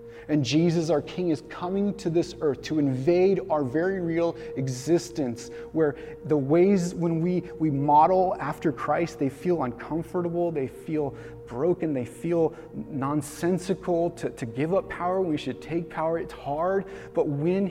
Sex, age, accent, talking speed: male, 30-49, American, 155 wpm